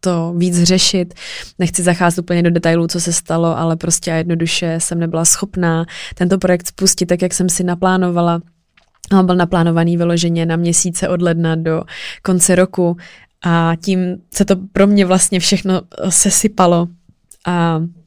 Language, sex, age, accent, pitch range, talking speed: Czech, female, 20-39, native, 170-190 Hz, 155 wpm